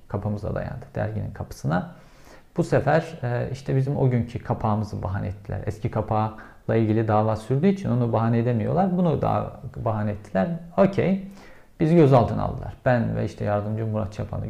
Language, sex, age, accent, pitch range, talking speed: Turkish, male, 50-69, native, 110-140 Hz, 150 wpm